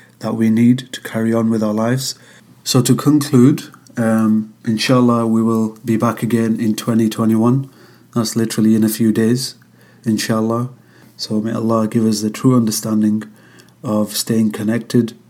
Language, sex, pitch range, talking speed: English, male, 110-120 Hz, 155 wpm